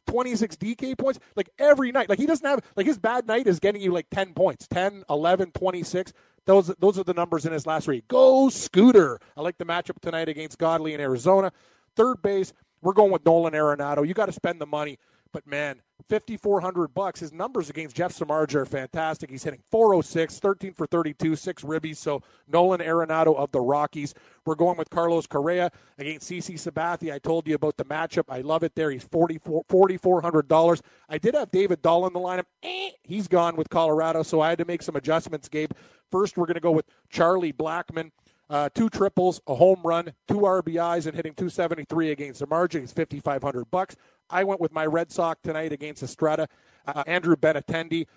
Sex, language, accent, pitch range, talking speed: male, English, American, 155-185 Hz, 200 wpm